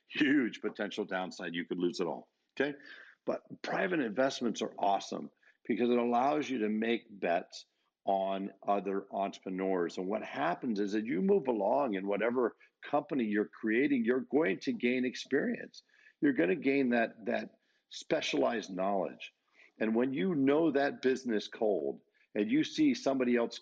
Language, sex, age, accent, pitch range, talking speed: English, male, 50-69, American, 100-140 Hz, 160 wpm